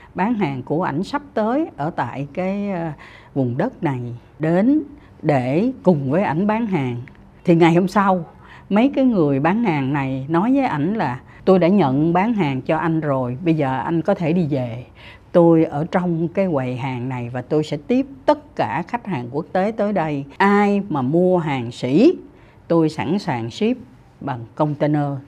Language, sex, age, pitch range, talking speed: Vietnamese, female, 60-79, 135-195 Hz, 185 wpm